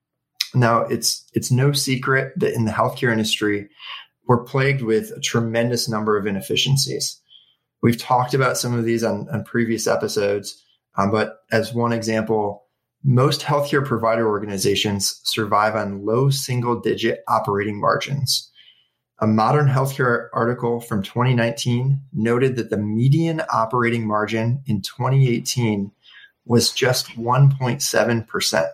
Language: English